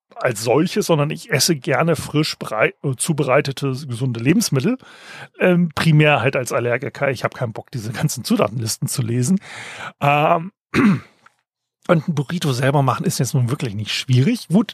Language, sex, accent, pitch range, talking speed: German, male, German, 130-180 Hz, 155 wpm